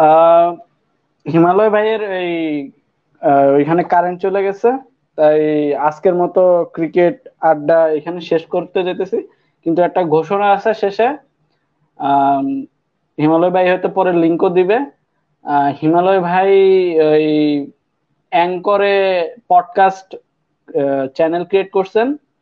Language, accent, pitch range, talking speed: Bengali, native, 160-195 Hz, 30 wpm